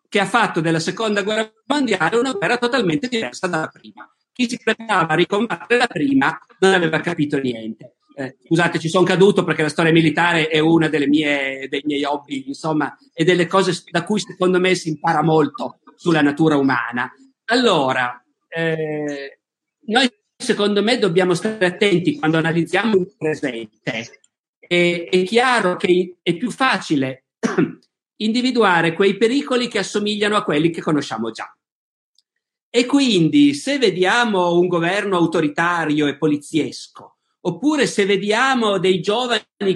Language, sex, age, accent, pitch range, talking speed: Italian, male, 50-69, native, 155-210 Hz, 145 wpm